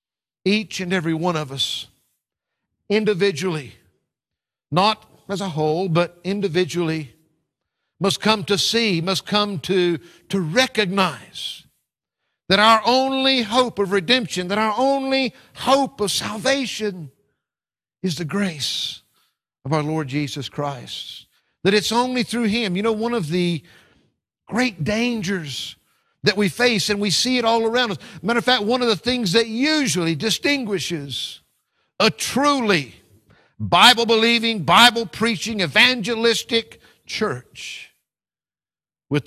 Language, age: English, 50-69